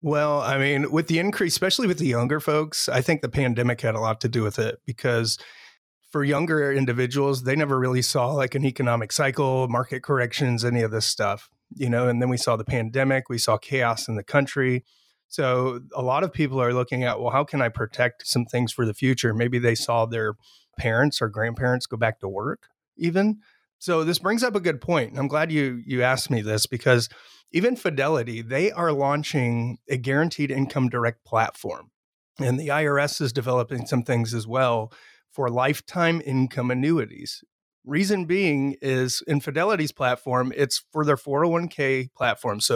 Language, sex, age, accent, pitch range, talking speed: English, male, 30-49, American, 120-145 Hz, 190 wpm